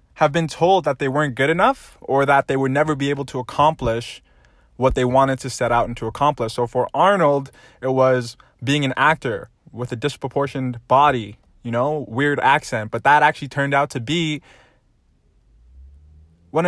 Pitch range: 125-150 Hz